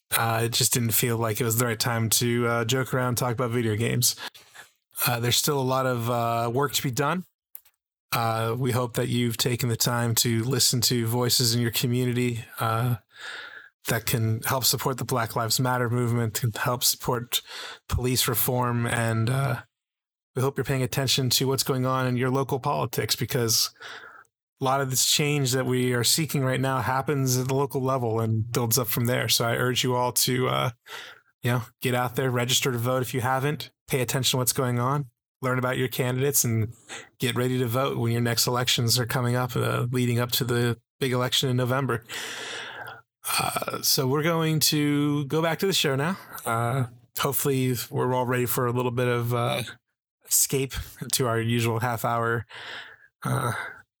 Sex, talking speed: male, 195 wpm